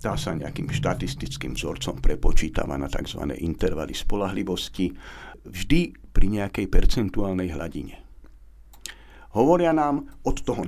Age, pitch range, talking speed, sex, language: 60-79, 90-120 Hz, 105 wpm, male, Slovak